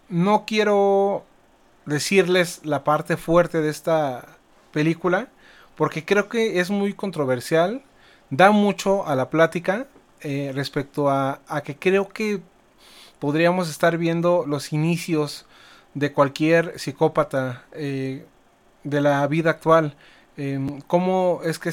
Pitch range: 145-170 Hz